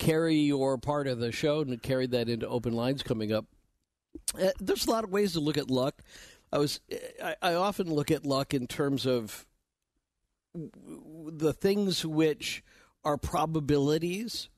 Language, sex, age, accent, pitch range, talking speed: English, male, 50-69, American, 125-160 Hz, 165 wpm